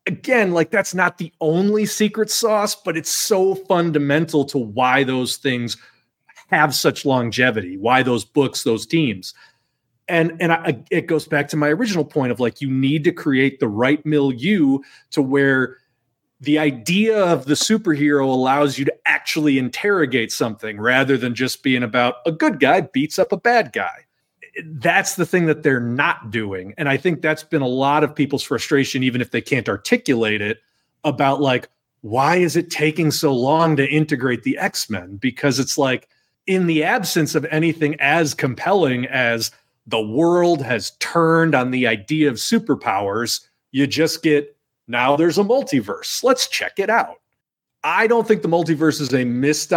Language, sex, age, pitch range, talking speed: English, male, 30-49, 130-170 Hz, 170 wpm